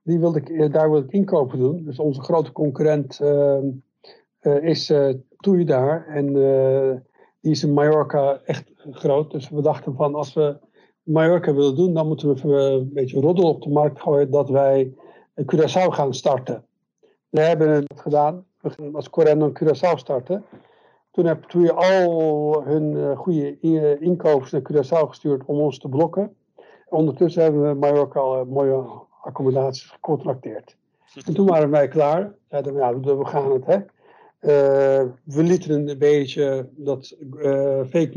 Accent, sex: Dutch, male